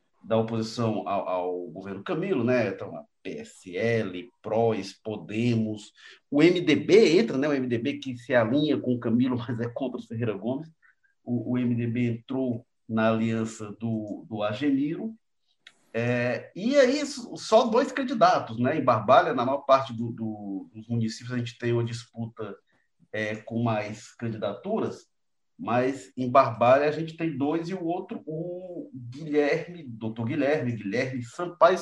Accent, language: Brazilian, Portuguese